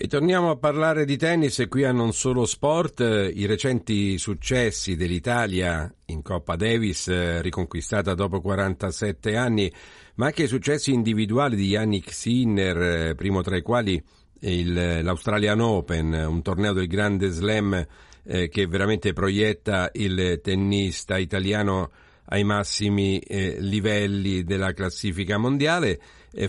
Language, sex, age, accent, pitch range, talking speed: Italian, male, 50-69, native, 95-115 Hz, 130 wpm